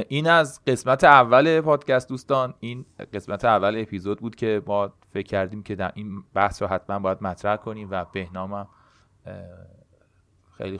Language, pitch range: Persian, 90-110 Hz